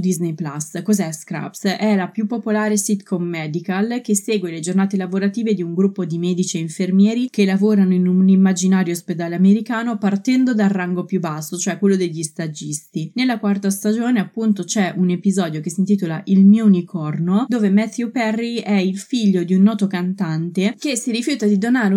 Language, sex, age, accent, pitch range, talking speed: Italian, female, 20-39, native, 175-205 Hz, 180 wpm